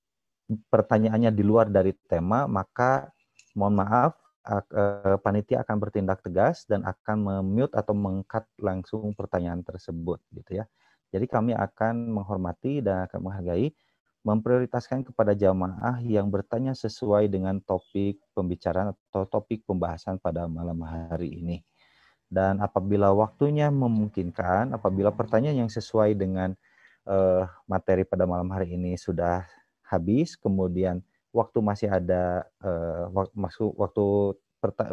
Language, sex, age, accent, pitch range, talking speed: Indonesian, male, 30-49, native, 90-110 Hz, 120 wpm